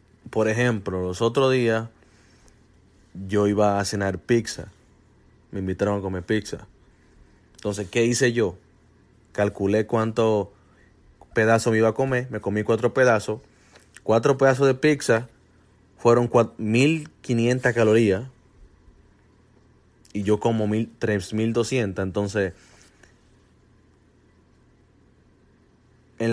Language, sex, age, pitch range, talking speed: English, male, 30-49, 95-115 Hz, 100 wpm